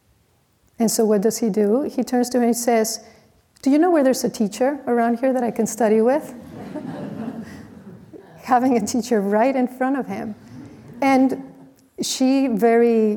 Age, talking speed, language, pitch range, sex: 40-59, 175 wpm, English, 200-235 Hz, female